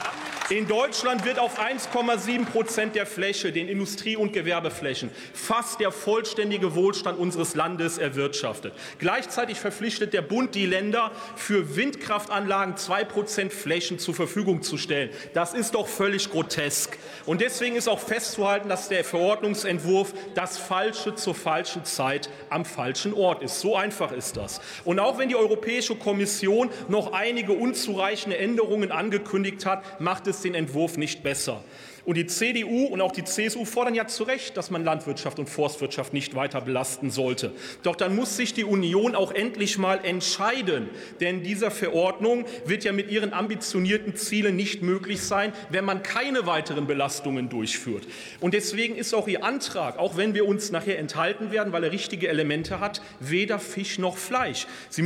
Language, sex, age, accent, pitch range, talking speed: German, male, 40-59, German, 170-220 Hz, 160 wpm